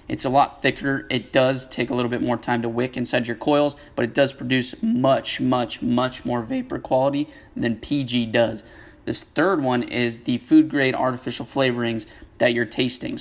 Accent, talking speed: American, 185 wpm